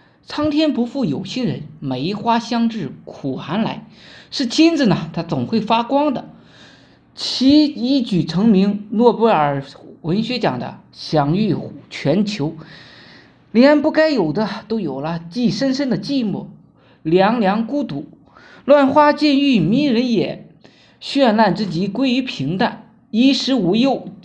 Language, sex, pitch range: Chinese, male, 175-260 Hz